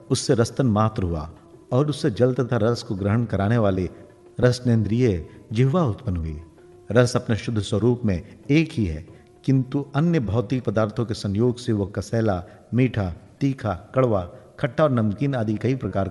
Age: 50-69